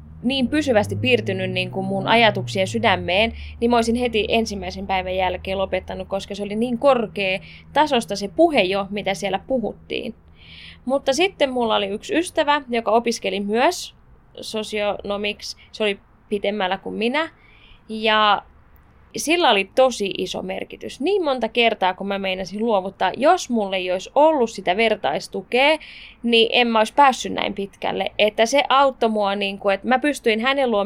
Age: 20-39